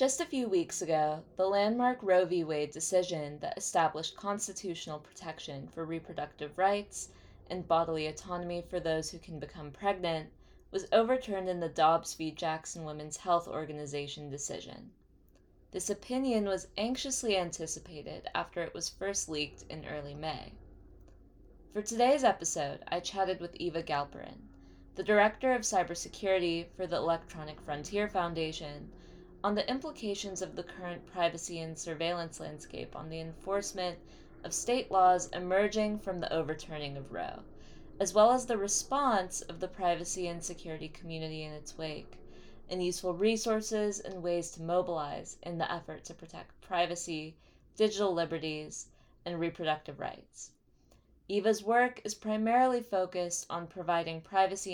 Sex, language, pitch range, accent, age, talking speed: female, English, 155-195 Hz, American, 20-39, 140 wpm